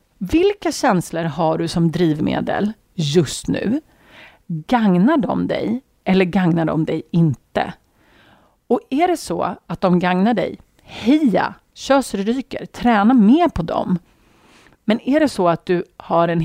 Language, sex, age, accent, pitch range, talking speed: Swedish, female, 40-59, native, 165-225 Hz, 140 wpm